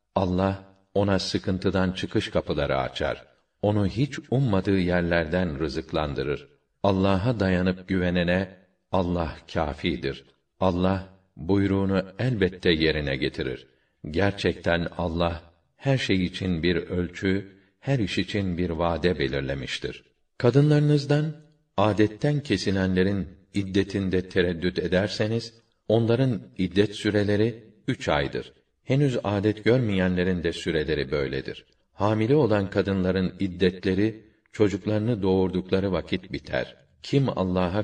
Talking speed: 95 wpm